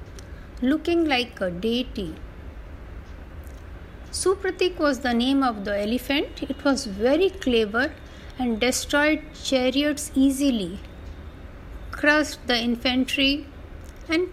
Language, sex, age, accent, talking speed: Hindi, female, 60-79, native, 95 wpm